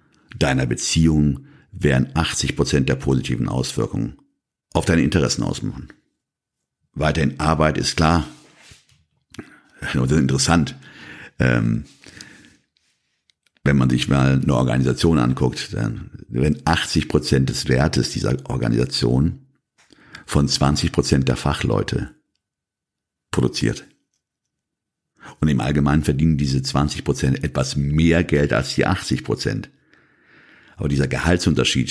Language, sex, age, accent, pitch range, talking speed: German, male, 50-69, German, 70-80 Hz, 95 wpm